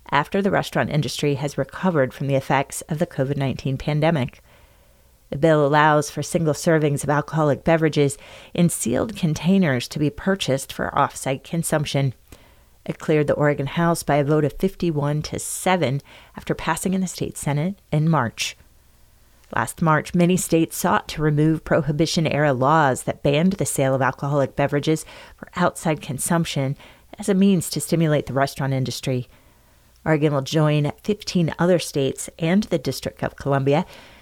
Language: English